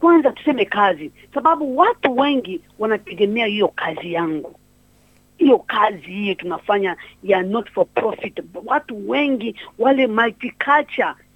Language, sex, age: Swahili, female, 50-69